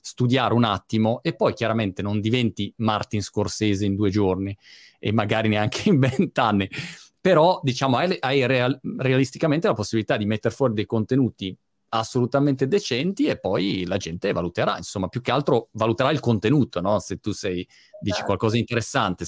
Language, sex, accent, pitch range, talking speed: Italian, male, native, 105-135 Hz, 160 wpm